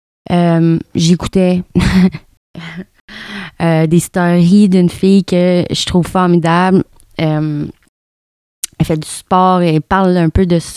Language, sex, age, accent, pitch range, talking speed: French, female, 20-39, Canadian, 160-190 Hz, 115 wpm